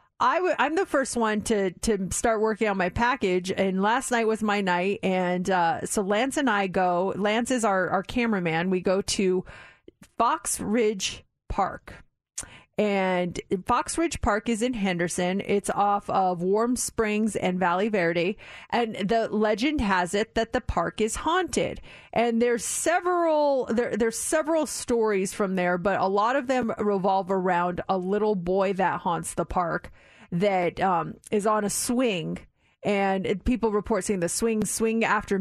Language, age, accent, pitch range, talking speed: English, 30-49, American, 195-230 Hz, 165 wpm